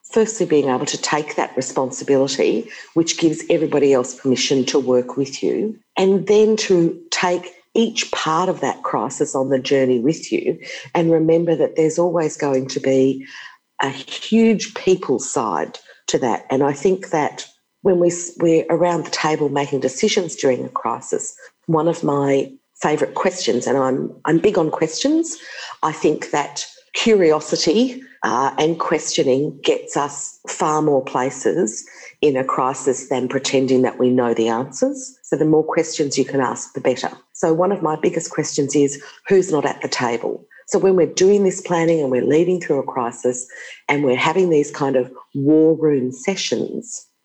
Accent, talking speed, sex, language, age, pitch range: Australian, 170 wpm, female, English, 50-69, 135-185 Hz